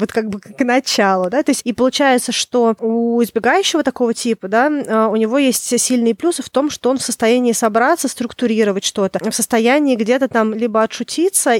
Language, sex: Russian, female